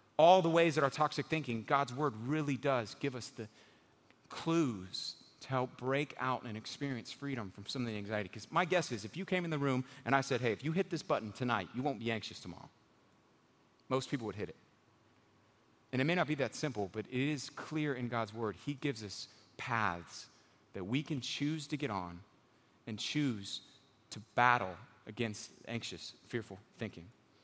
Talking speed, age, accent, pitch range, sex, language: 195 wpm, 30-49, American, 115-150 Hz, male, English